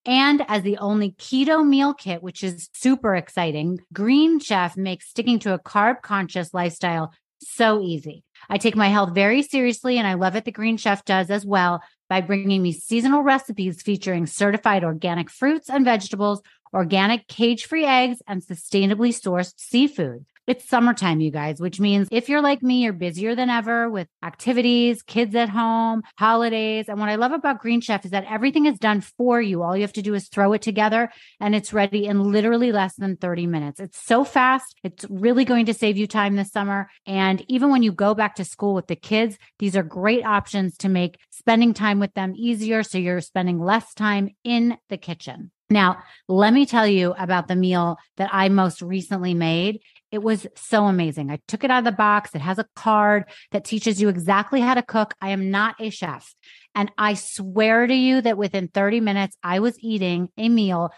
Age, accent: 30-49, American